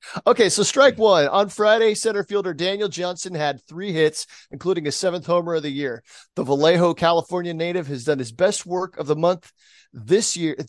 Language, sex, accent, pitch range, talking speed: English, male, American, 150-180 Hz, 190 wpm